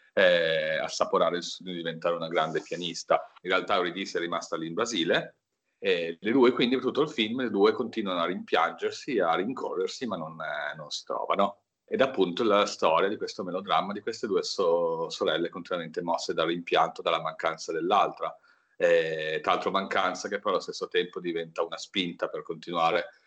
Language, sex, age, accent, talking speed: Italian, male, 40-59, native, 185 wpm